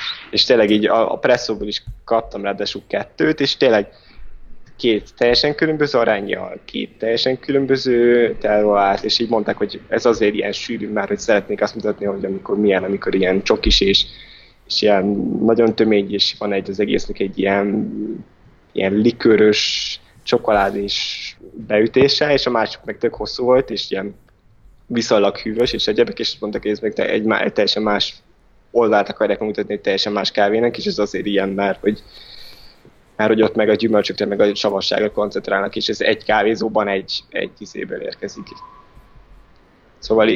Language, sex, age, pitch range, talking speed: Hungarian, male, 20-39, 100-120 Hz, 160 wpm